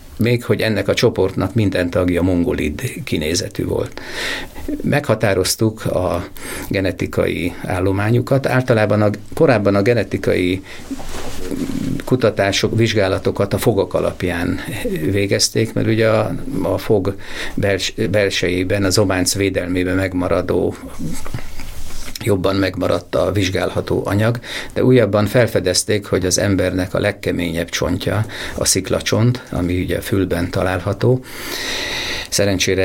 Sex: male